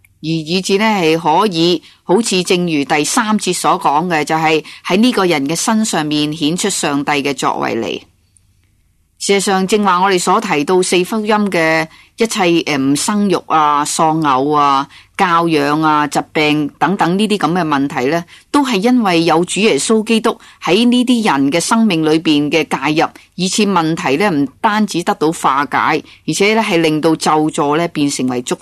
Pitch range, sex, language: 150-200 Hz, female, Chinese